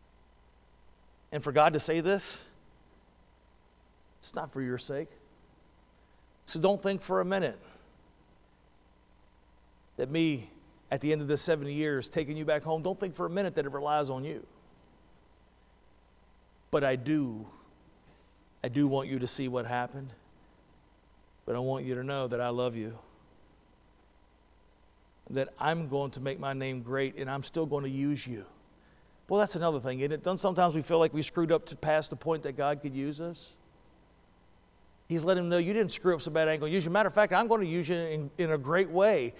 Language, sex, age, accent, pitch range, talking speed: English, male, 50-69, American, 130-165 Hz, 195 wpm